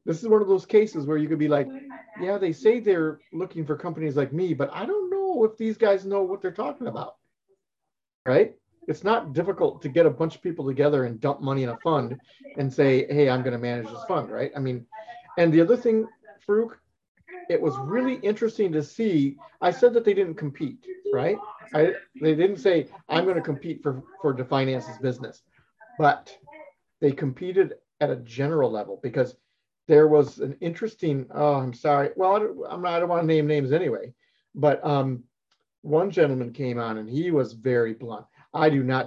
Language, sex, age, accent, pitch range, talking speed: English, male, 40-59, American, 140-220 Hz, 195 wpm